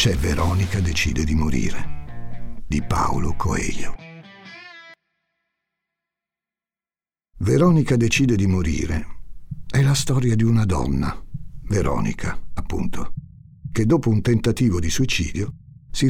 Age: 60-79